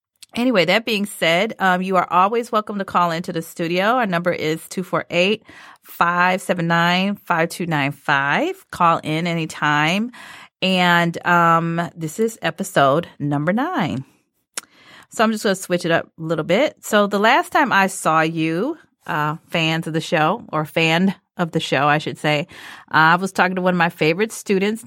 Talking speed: 165 wpm